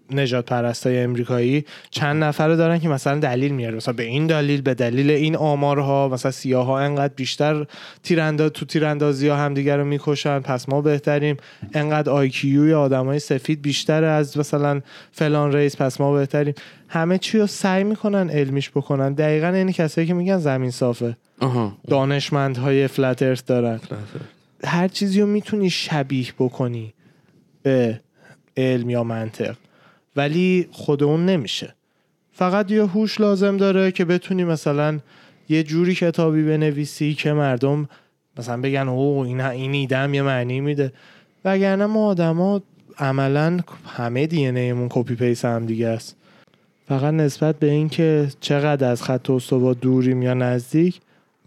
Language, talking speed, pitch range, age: Persian, 140 wpm, 130-165 Hz, 20-39